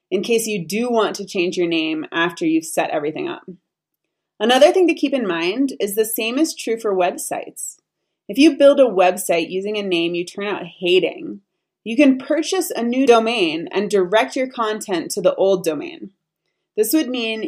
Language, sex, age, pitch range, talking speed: English, female, 30-49, 185-265 Hz, 190 wpm